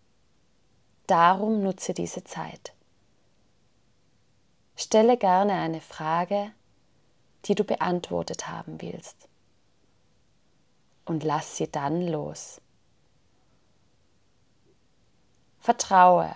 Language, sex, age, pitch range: German, female, 30-49, 155-205 Hz